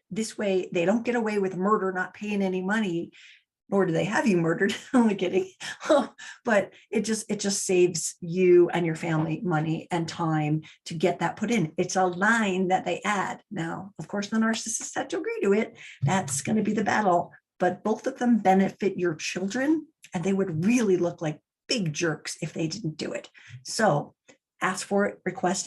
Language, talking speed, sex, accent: English, 200 wpm, female, American